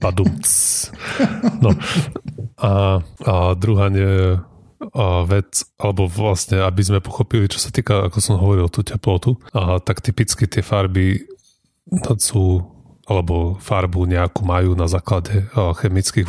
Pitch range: 90-105 Hz